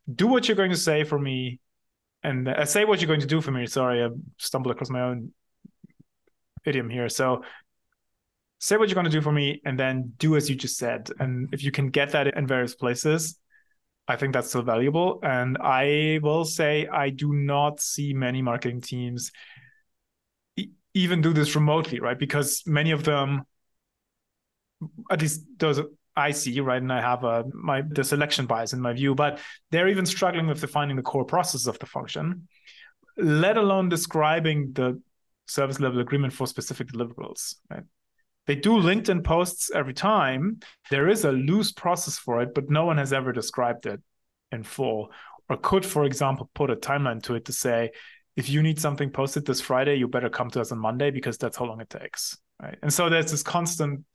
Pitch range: 130-160 Hz